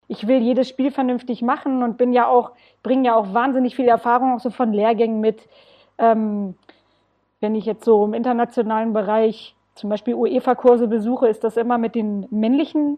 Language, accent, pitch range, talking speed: German, German, 220-260 Hz, 180 wpm